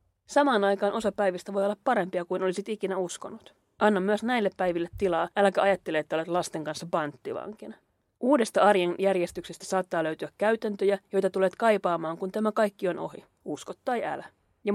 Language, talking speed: Finnish, 165 wpm